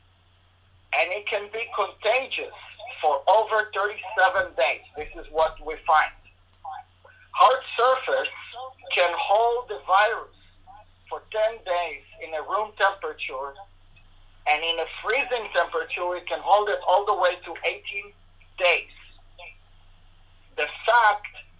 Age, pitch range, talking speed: 50-69, 155-245 Hz, 120 wpm